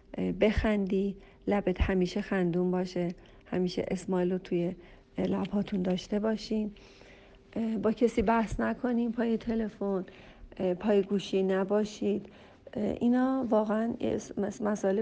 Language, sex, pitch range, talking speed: Persian, female, 190-230 Hz, 95 wpm